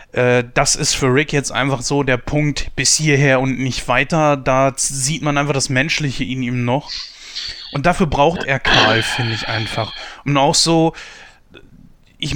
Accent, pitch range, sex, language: German, 130-160 Hz, male, German